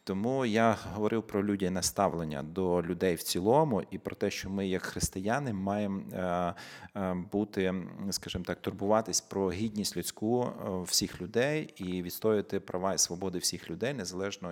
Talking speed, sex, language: 150 wpm, male, Ukrainian